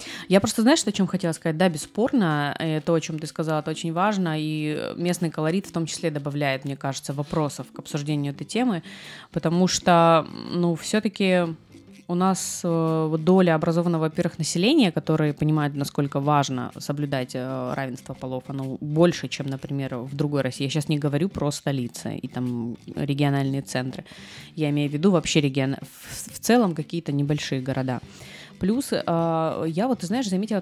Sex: female